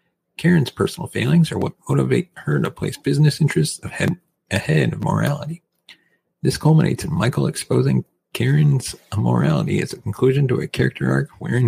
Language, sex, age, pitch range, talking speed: English, male, 40-59, 130-165 Hz, 150 wpm